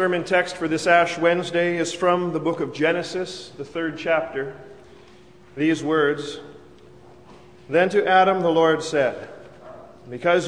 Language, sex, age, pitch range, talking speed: English, male, 40-59, 150-175 Hz, 145 wpm